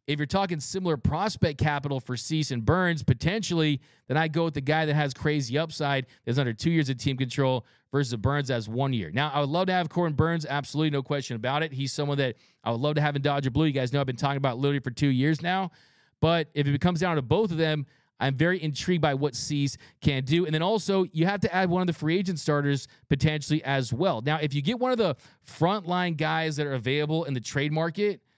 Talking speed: 250 wpm